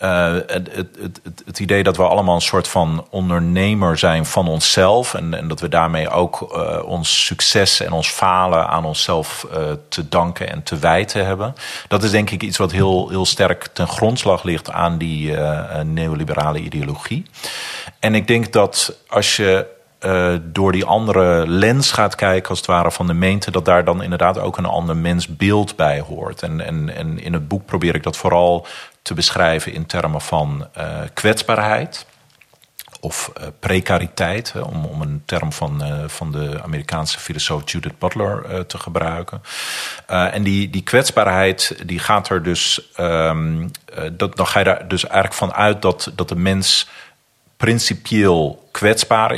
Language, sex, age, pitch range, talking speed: Dutch, male, 40-59, 80-100 Hz, 170 wpm